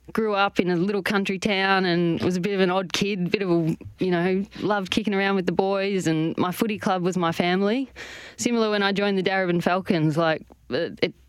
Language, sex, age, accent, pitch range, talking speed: English, female, 20-39, Australian, 170-195 Hz, 225 wpm